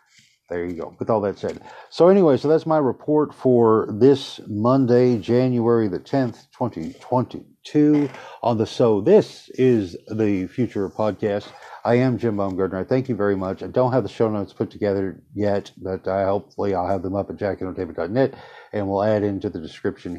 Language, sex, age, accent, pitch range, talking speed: English, male, 60-79, American, 100-125 Hz, 180 wpm